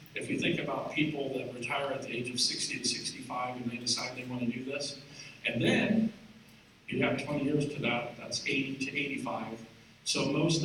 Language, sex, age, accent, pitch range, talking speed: English, male, 50-69, American, 135-165 Hz, 205 wpm